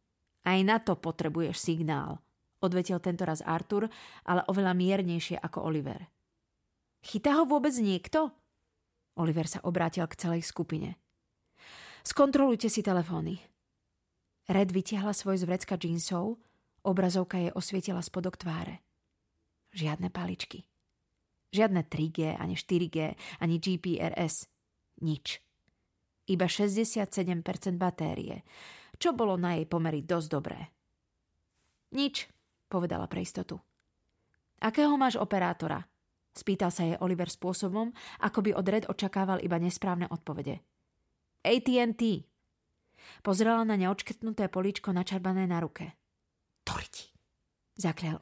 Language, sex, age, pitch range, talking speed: Slovak, female, 30-49, 165-200 Hz, 105 wpm